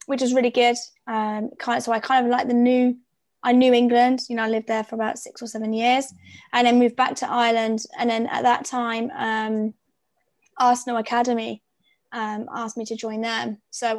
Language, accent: English, British